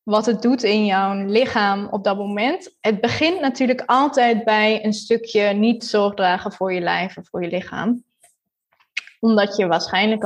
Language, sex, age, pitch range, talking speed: Dutch, female, 20-39, 205-235 Hz, 165 wpm